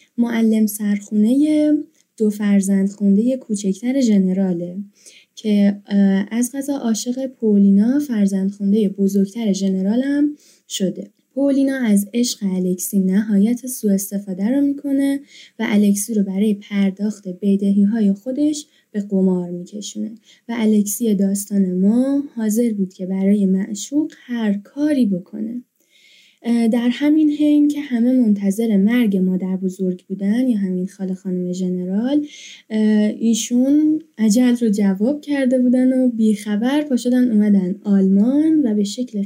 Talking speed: 120 wpm